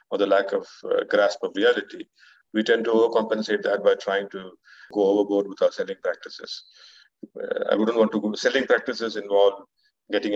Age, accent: 50-69, Indian